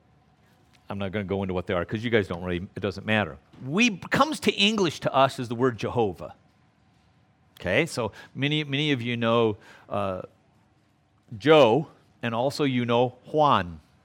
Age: 50-69